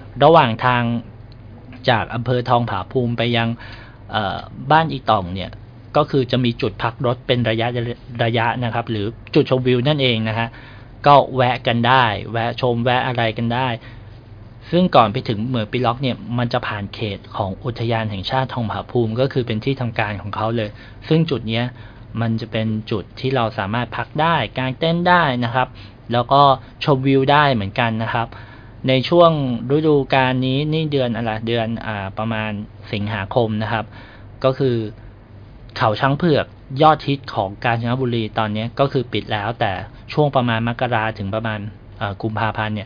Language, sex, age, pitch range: Thai, male, 20-39, 110-130 Hz